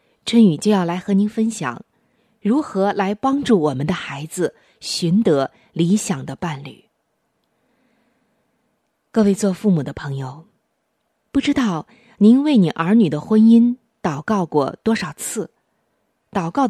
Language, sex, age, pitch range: Chinese, female, 20-39, 165-235 Hz